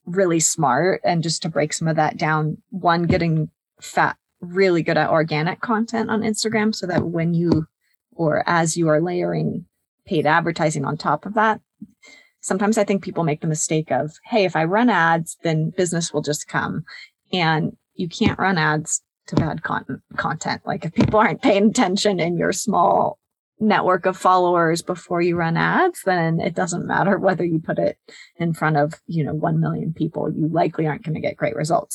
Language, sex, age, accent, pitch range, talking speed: English, female, 30-49, American, 155-190 Hz, 190 wpm